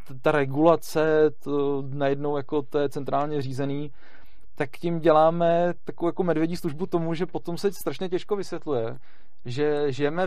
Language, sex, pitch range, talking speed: Czech, male, 135-155 Hz, 145 wpm